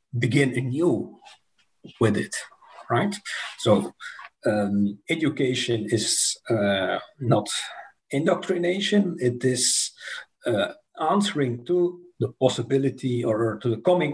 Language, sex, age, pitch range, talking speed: English, male, 50-69, 115-140 Hz, 100 wpm